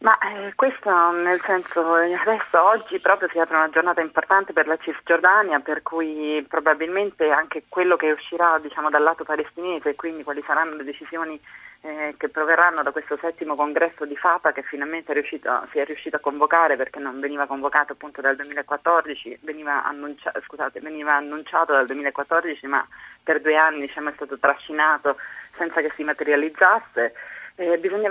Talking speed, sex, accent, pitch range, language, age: 170 wpm, female, native, 140-165 Hz, Italian, 30-49